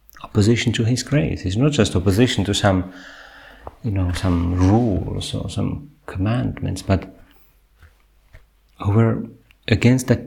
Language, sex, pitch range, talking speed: Finnish, male, 90-115 Hz, 125 wpm